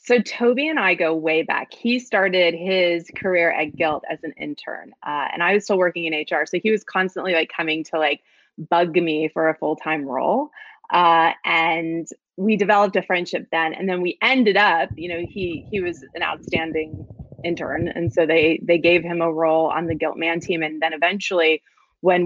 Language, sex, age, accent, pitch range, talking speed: English, female, 20-39, American, 160-190 Hz, 200 wpm